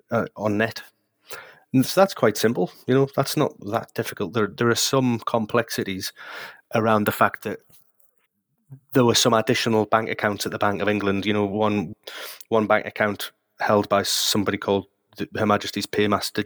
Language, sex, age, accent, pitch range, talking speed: English, male, 30-49, British, 100-120 Hz, 170 wpm